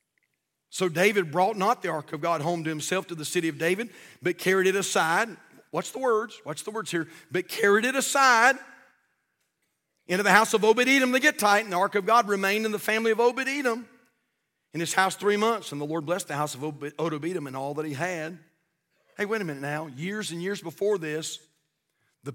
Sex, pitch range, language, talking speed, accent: male, 155-210 Hz, English, 210 wpm, American